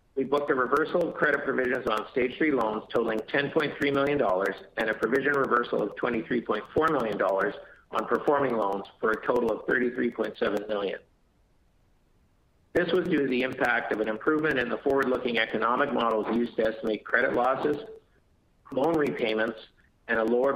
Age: 50-69